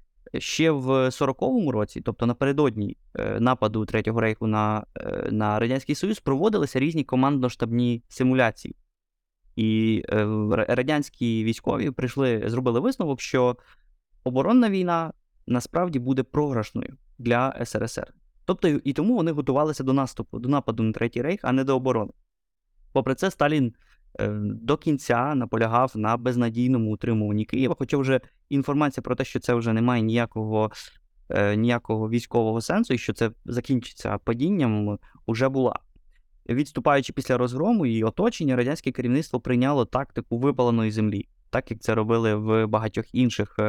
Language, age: Ukrainian, 20-39